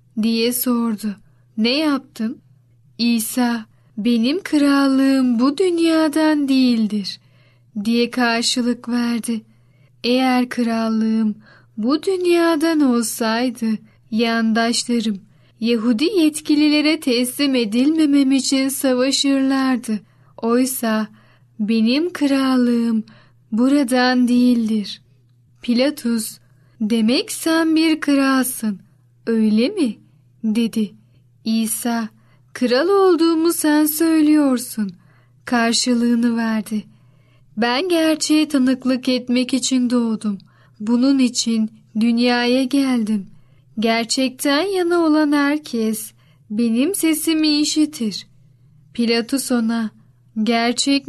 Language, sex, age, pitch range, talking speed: Turkish, female, 10-29, 215-275 Hz, 75 wpm